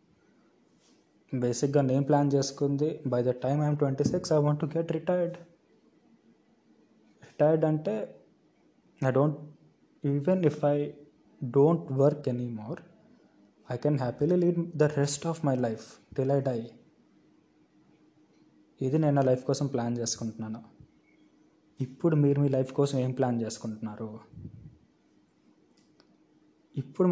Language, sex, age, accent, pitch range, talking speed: Telugu, male, 20-39, native, 125-145 Hz, 115 wpm